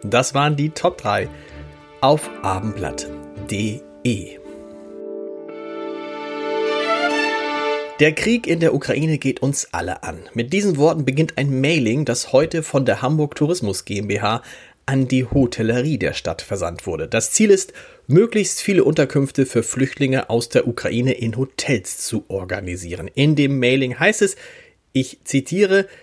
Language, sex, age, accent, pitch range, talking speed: German, male, 30-49, German, 120-160 Hz, 135 wpm